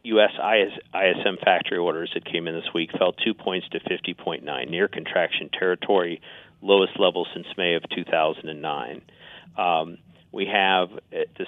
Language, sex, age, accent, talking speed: English, male, 50-69, American, 145 wpm